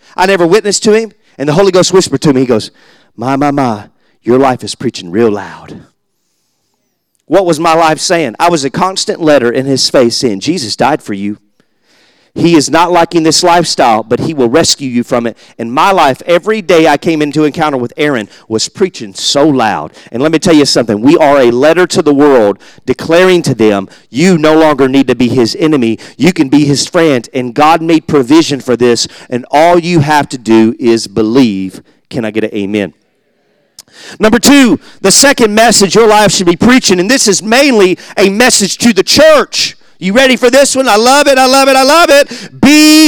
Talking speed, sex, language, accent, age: 210 wpm, male, English, American, 40-59